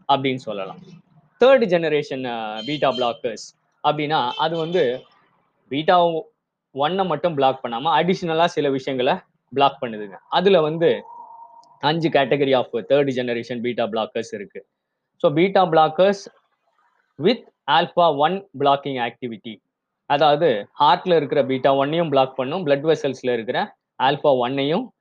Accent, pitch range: native, 130-170 Hz